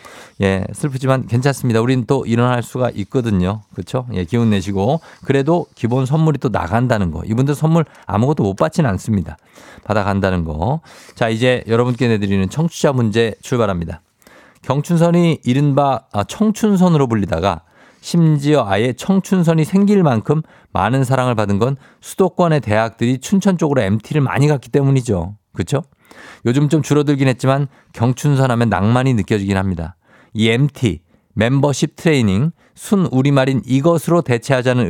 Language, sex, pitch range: Korean, male, 110-150 Hz